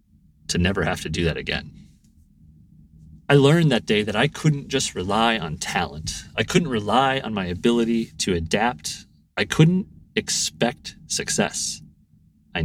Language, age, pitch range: English, 30-49, 90-140 Hz